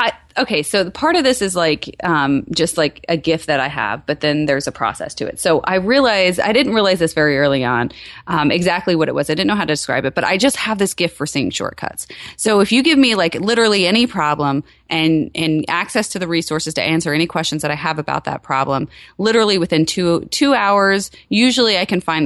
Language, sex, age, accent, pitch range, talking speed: English, female, 30-49, American, 145-195 Hz, 240 wpm